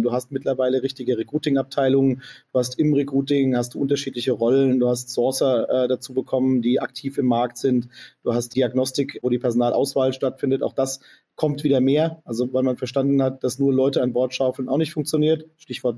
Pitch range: 130-145 Hz